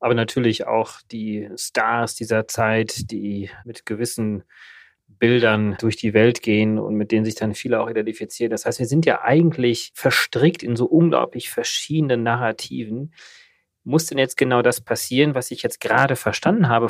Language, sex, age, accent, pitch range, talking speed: German, male, 30-49, German, 115-140 Hz, 165 wpm